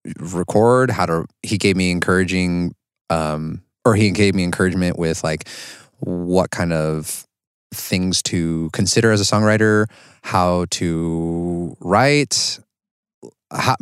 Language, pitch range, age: English, 85-115 Hz, 30-49